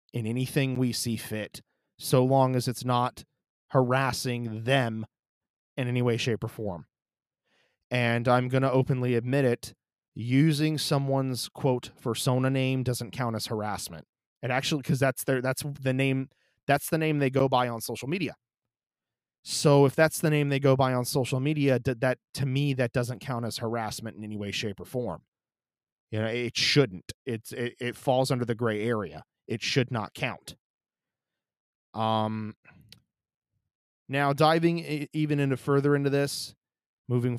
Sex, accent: male, American